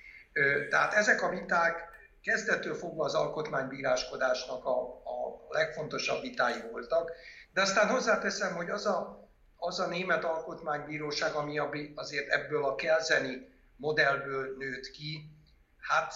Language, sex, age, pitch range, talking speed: Hungarian, male, 60-79, 145-195 Hz, 115 wpm